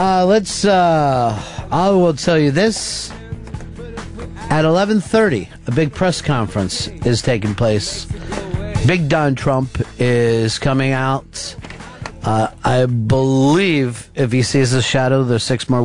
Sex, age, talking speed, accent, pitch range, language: male, 50-69, 130 wpm, American, 115-160 Hz, English